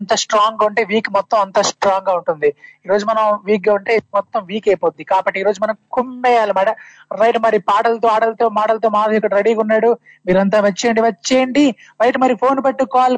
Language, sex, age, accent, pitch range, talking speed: Telugu, male, 20-39, native, 200-240 Hz, 175 wpm